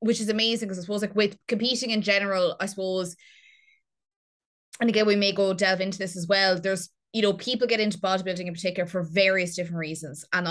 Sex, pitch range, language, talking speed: female, 175-195 Hz, English, 210 wpm